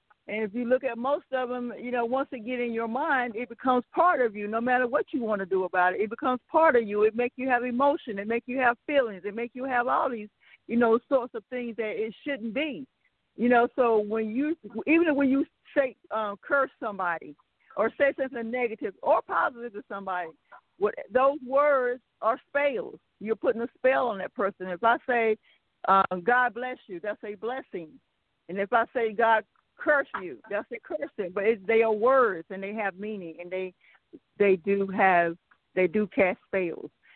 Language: English